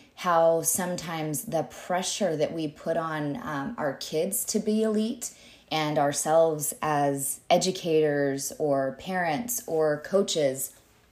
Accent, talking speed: American, 120 wpm